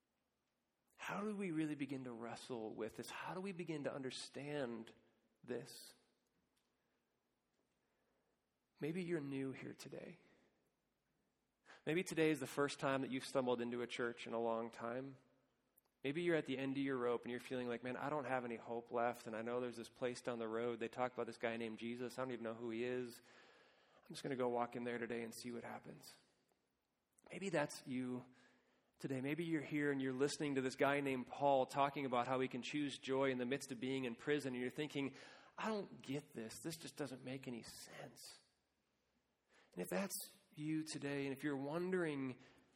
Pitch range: 120-145 Hz